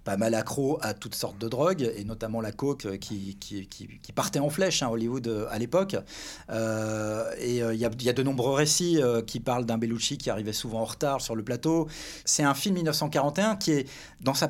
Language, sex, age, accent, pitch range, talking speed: French, male, 40-59, French, 125-175 Hz, 230 wpm